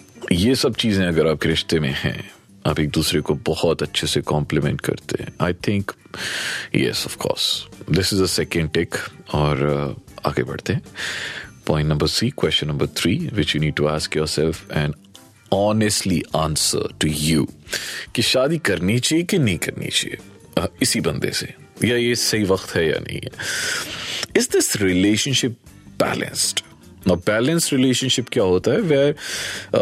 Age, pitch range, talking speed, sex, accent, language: 40-59, 80-130 Hz, 160 wpm, male, native, Hindi